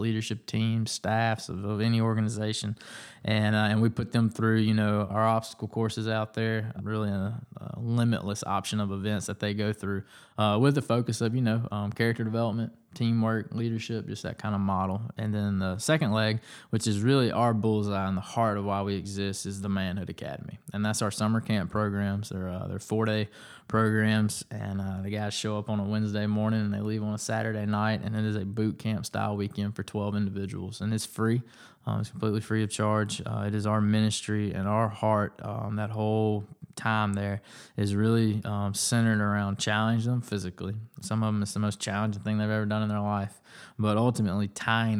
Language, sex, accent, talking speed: English, male, American, 210 wpm